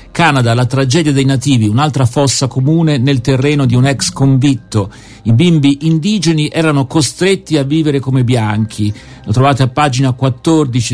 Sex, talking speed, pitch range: male, 155 wpm, 130-165 Hz